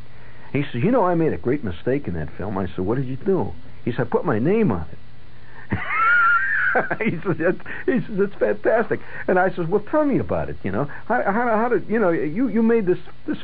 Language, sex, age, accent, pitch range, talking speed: English, male, 60-79, American, 95-135 Hz, 240 wpm